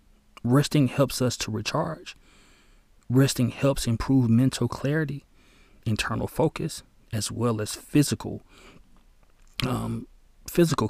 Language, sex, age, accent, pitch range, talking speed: English, male, 30-49, American, 110-135 Hz, 100 wpm